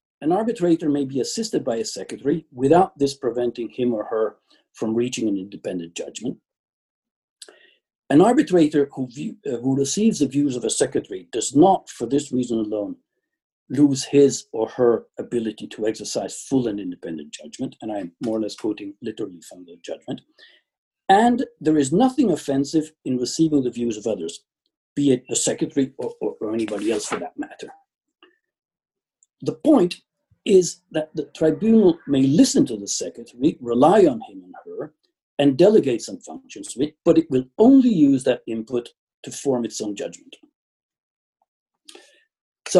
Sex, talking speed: male, 165 wpm